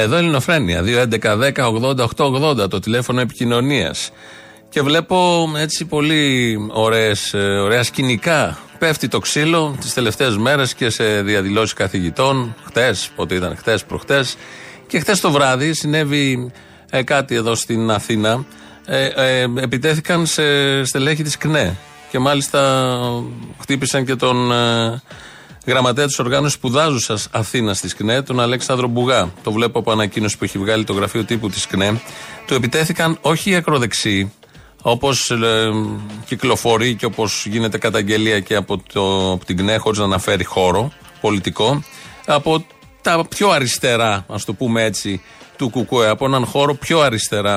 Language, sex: Greek, male